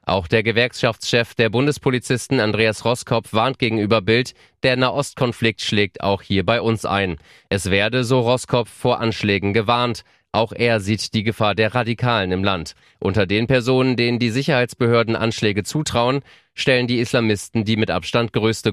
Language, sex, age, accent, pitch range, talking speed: German, male, 30-49, German, 100-125 Hz, 155 wpm